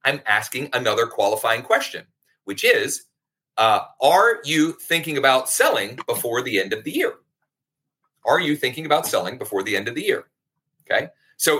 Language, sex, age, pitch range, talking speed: English, male, 40-59, 135-180 Hz, 165 wpm